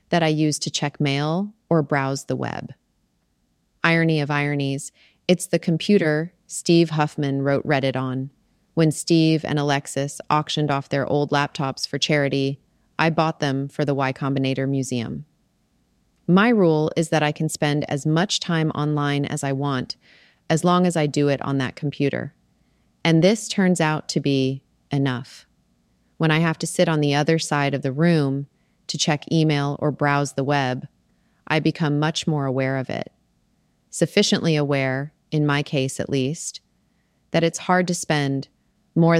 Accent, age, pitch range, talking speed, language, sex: American, 30-49, 140-165 Hz, 165 wpm, English, female